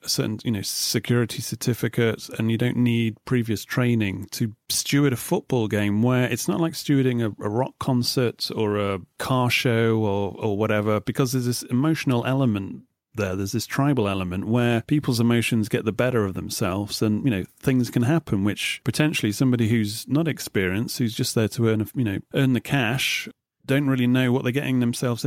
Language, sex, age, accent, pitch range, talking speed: English, male, 30-49, British, 110-135 Hz, 190 wpm